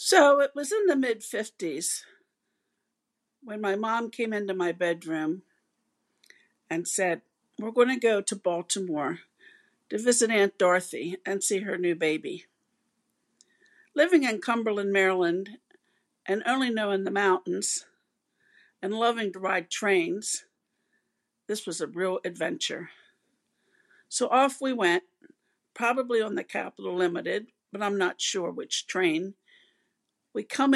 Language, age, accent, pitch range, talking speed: English, 60-79, American, 190-250 Hz, 130 wpm